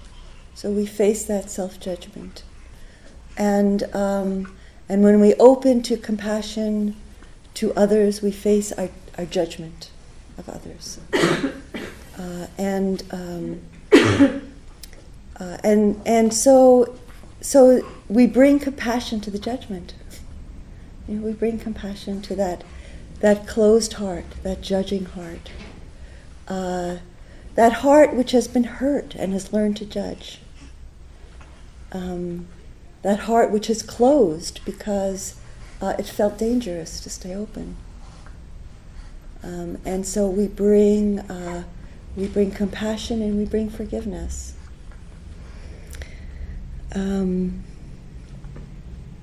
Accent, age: American, 40-59